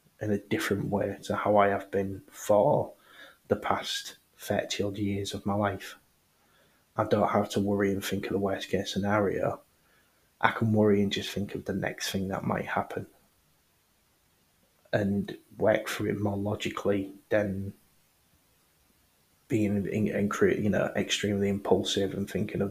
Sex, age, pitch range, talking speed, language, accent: male, 30-49, 100-105 Hz, 155 wpm, English, British